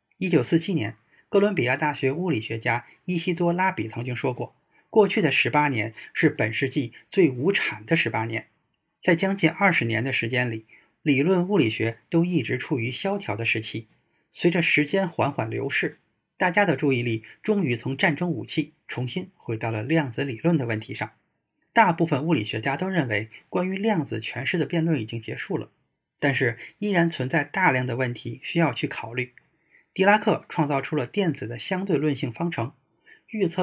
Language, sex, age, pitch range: Chinese, male, 20-39, 125-175 Hz